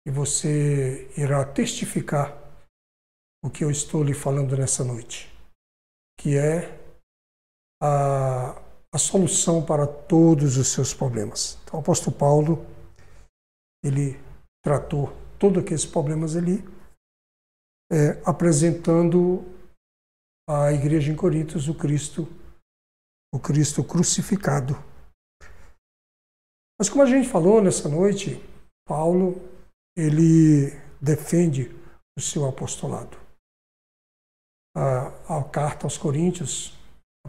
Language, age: Portuguese, 60-79